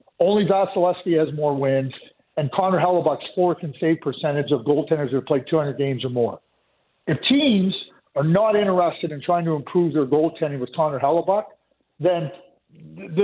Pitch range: 155-215 Hz